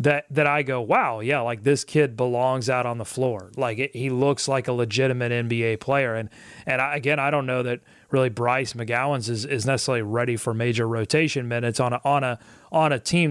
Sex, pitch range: male, 120-145 Hz